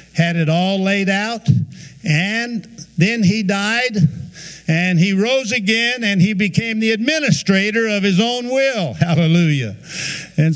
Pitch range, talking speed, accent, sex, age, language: 150-185 Hz, 135 wpm, American, male, 60-79, English